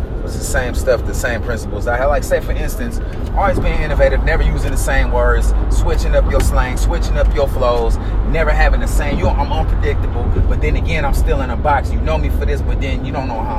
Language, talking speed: Arabic, 245 wpm